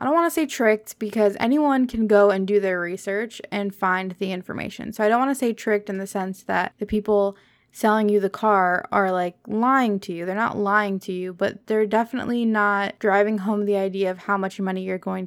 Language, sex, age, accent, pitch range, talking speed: English, female, 20-39, American, 200-240 Hz, 230 wpm